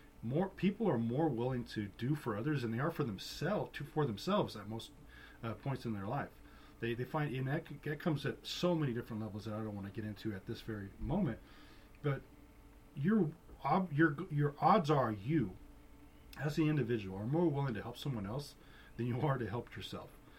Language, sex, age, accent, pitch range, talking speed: English, male, 40-59, American, 115-155 Hz, 210 wpm